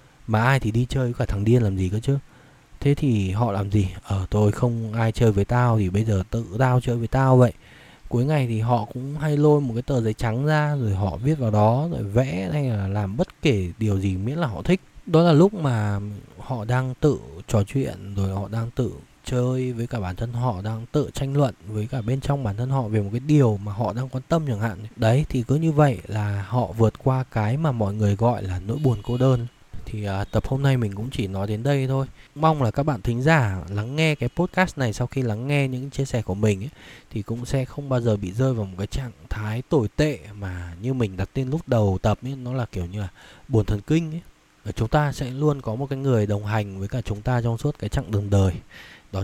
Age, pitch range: 20-39, 105-135 Hz